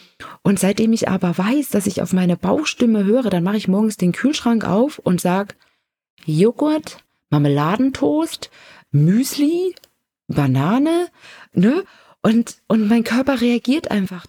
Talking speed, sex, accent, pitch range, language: 130 wpm, female, German, 160-230 Hz, German